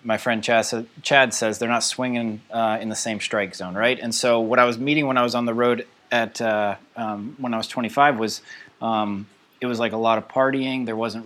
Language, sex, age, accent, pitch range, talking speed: English, male, 30-49, American, 110-125 Hz, 235 wpm